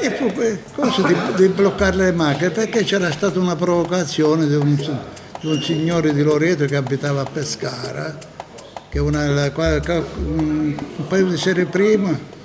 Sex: male